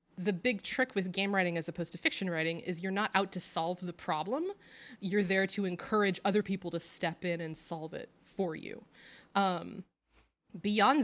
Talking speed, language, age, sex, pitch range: 190 wpm, English, 20-39, female, 185-235 Hz